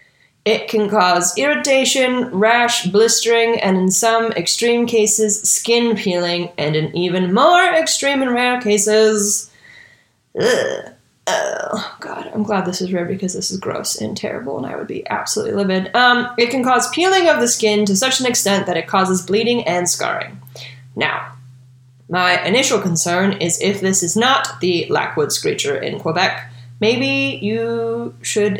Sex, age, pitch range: female, 20-39, 175-240 Hz